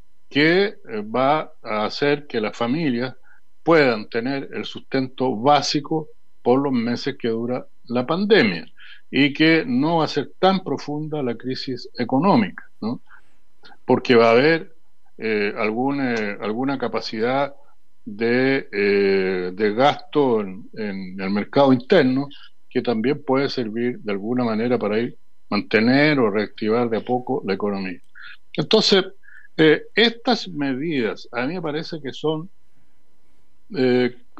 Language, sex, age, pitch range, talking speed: Spanish, male, 60-79, 120-150 Hz, 135 wpm